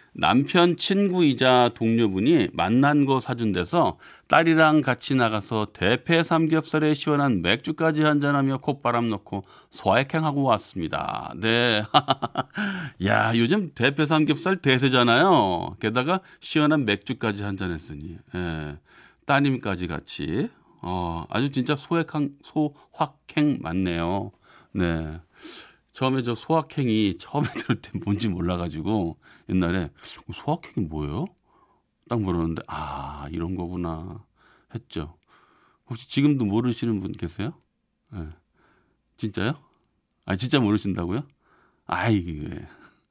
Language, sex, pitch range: Korean, male, 95-150 Hz